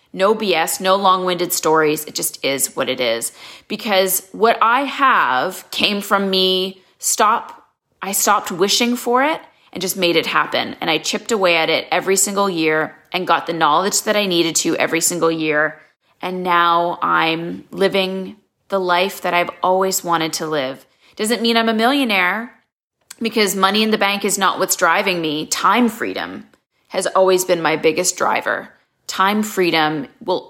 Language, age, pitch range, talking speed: English, 30-49, 165-200 Hz, 170 wpm